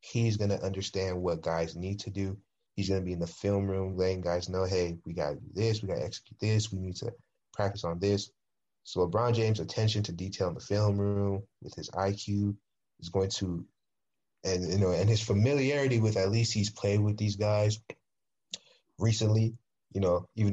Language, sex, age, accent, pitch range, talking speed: English, male, 20-39, American, 95-105 Hz, 195 wpm